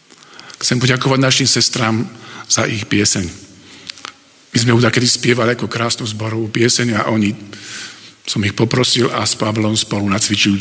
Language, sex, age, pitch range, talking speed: Slovak, male, 50-69, 105-125 Hz, 155 wpm